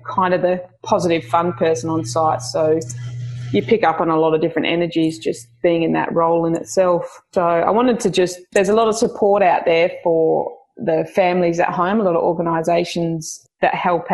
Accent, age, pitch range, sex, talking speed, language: Australian, 20-39, 165-190 Hz, female, 205 wpm, English